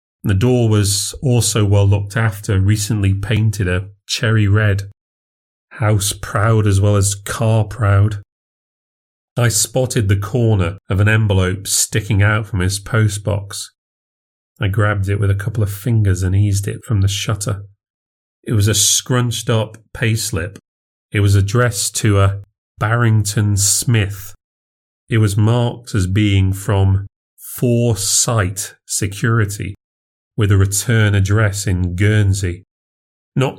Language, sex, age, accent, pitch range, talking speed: English, male, 30-49, British, 95-110 Hz, 130 wpm